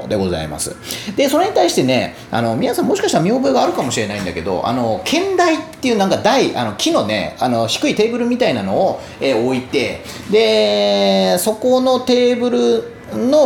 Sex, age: male, 30-49